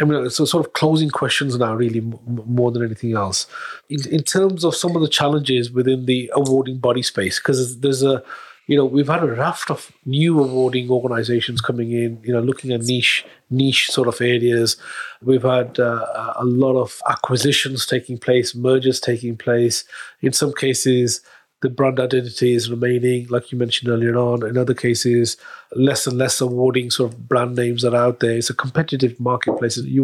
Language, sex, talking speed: English, male, 190 wpm